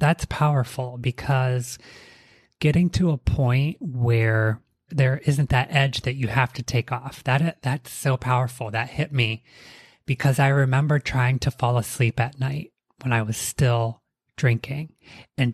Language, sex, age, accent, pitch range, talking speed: English, male, 30-49, American, 115-140 Hz, 150 wpm